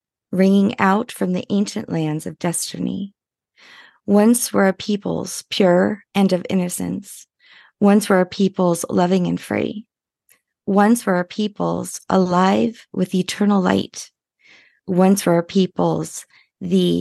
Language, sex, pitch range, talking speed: English, female, 175-205 Hz, 125 wpm